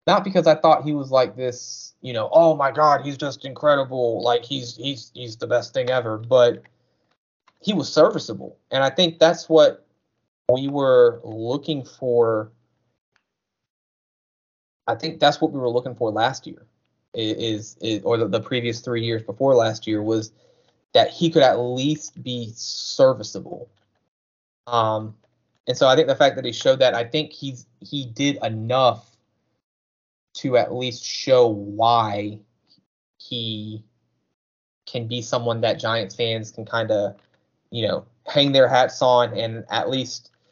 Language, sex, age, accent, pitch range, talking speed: English, male, 20-39, American, 115-140 Hz, 160 wpm